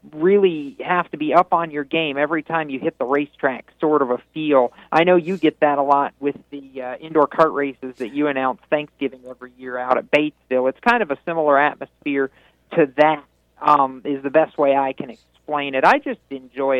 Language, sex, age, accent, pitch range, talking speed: English, male, 40-59, American, 140-180 Hz, 215 wpm